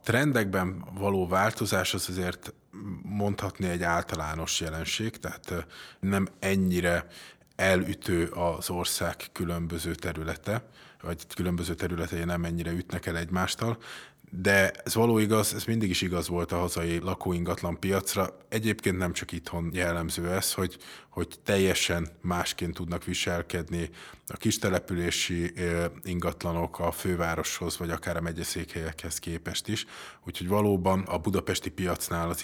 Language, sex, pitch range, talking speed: Hungarian, male, 85-95 Hz, 125 wpm